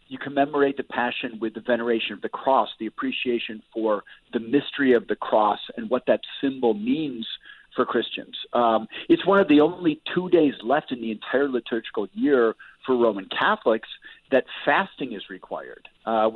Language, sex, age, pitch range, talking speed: English, male, 50-69, 110-140 Hz, 170 wpm